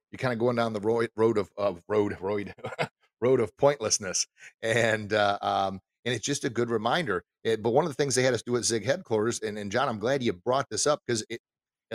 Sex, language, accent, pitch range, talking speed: male, English, American, 105-125 Hz, 230 wpm